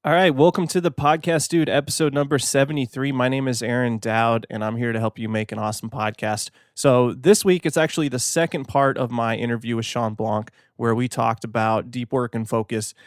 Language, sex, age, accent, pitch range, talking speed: English, male, 20-39, American, 115-140 Hz, 215 wpm